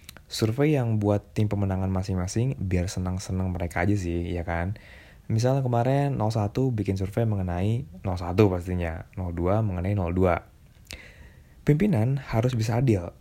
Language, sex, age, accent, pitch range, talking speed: Indonesian, male, 20-39, native, 90-110 Hz, 125 wpm